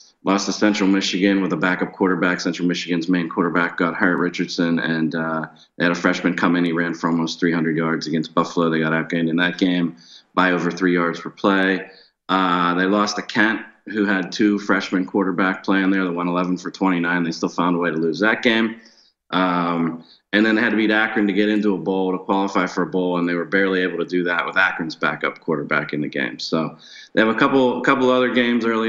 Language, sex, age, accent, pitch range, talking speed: English, male, 30-49, American, 85-100 Hz, 230 wpm